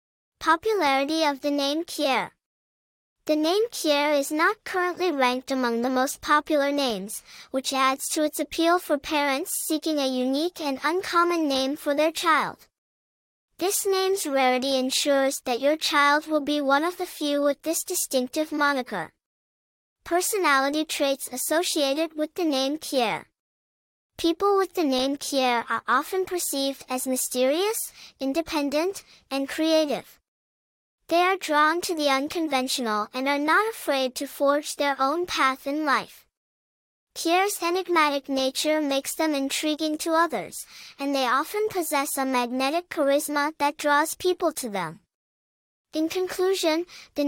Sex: male